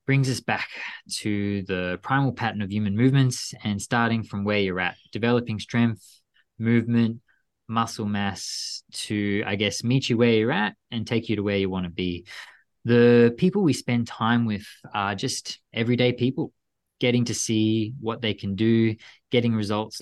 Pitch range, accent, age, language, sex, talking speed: 100-120 Hz, Australian, 20-39, English, male, 170 wpm